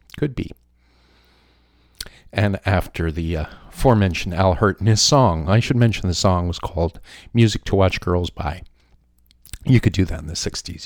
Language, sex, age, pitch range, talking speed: English, male, 50-69, 80-105 Hz, 170 wpm